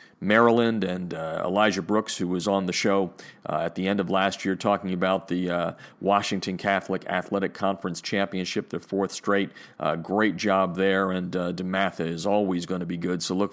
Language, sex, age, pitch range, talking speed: English, male, 40-59, 95-115 Hz, 195 wpm